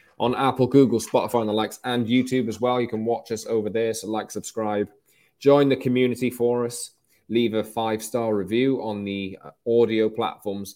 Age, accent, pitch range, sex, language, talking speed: 20-39, British, 95-125 Hz, male, English, 190 wpm